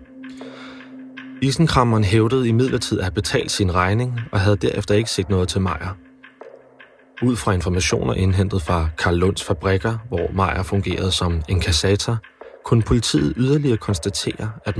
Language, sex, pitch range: Danish, male, 90-120 Hz